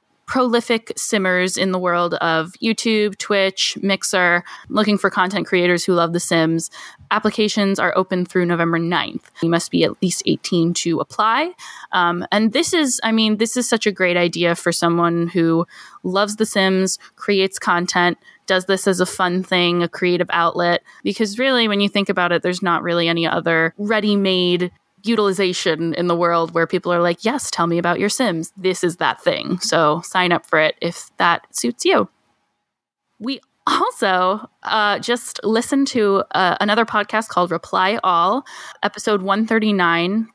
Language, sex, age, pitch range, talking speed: English, female, 10-29, 175-215 Hz, 170 wpm